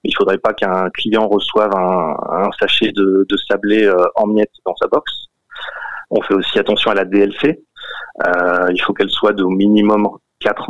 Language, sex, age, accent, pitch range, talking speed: French, male, 30-49, French, 95-120 Hz, 190 wpm